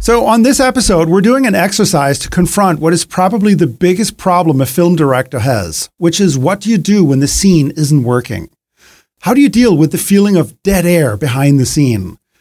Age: 40-59